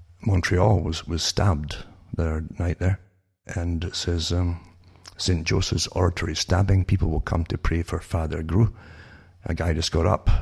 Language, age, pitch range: English, 60-79, 85-100 Hz